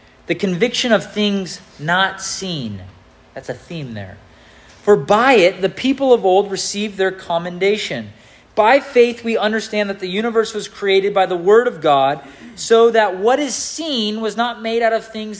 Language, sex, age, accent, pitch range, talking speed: English, male, 30-49, American, 160-230 Hz, 175 wpm